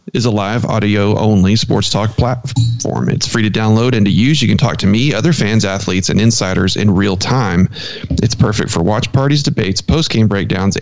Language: English